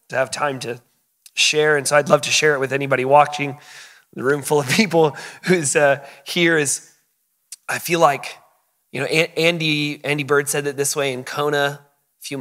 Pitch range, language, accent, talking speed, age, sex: 140-185 Hz, English, American, 195 wpm, 30-49, male